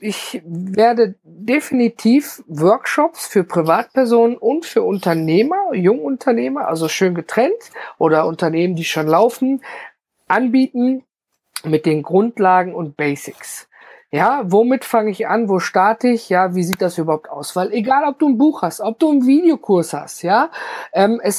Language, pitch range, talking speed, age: German, 175-250 Hz, 150 wpm, 50-69